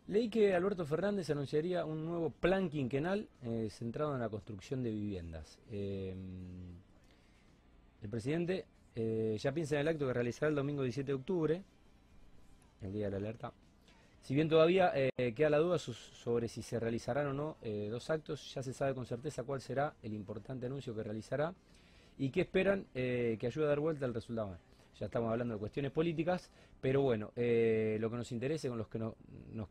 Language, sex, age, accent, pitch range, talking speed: Spanish, male, 30-49, Argentinian, 100-140 Hz, 190 wpm